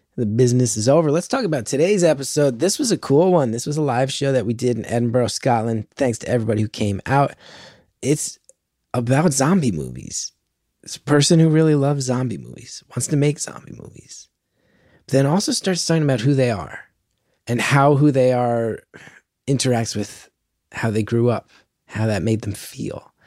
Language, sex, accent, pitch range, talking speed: English, male, American, 120-170 Hz, 185 wpm